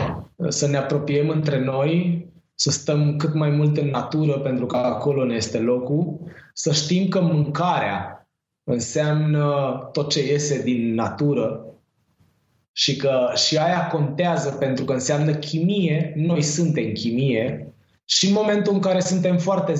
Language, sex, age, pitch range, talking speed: Romanian, male, 20-39, 140-175 Hz, 140 wpm